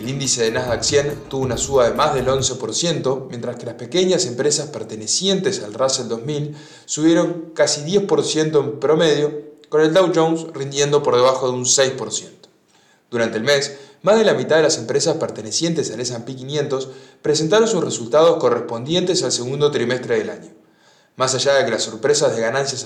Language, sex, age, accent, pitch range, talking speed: English, male, 20-39, Argentinian, 120-155 Hz, 175 wpm